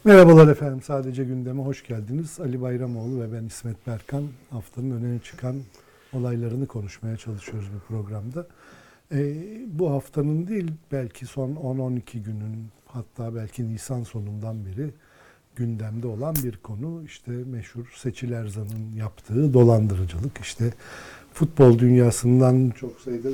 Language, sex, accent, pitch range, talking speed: Turkish, male, native, 115-145 Hz, 125 wpm